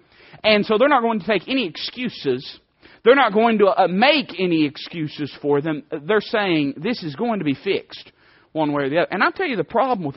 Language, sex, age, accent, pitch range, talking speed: English, male, 40-59, American, 180-245 Hz, 230 wpm